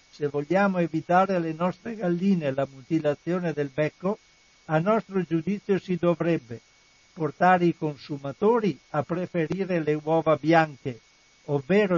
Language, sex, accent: Italian, male, native